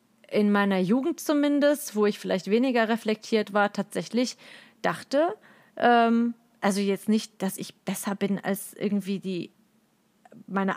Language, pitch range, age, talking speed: German, 200-245 Hz, 30-49, 135 wpm